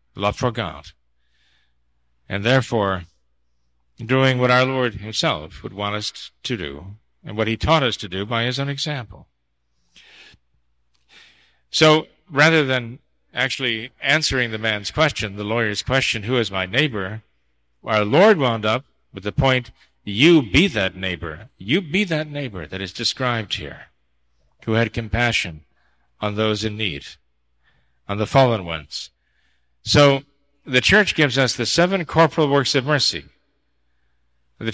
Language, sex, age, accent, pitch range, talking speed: English, male, 50-69, American, 80-135 Hz, 145 wpm